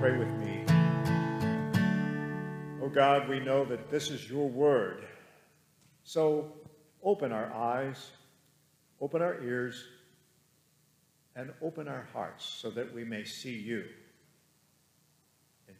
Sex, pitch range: male, 125-155 Hz